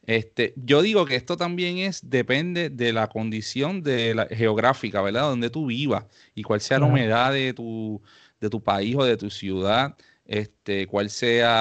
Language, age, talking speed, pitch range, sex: English, 30-49, 175 wpm, 110-140 Hz, male